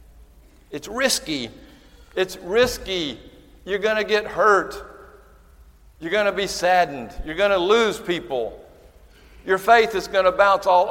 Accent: American